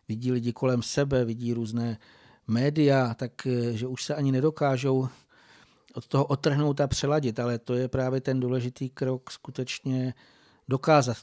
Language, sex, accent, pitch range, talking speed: Czech, male, native, 120-135 Hz, 140 wpm